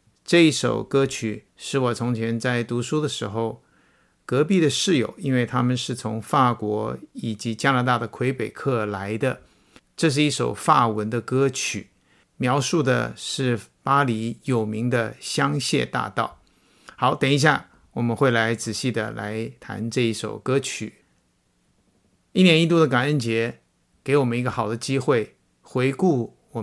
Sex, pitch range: male, 115-145 Hz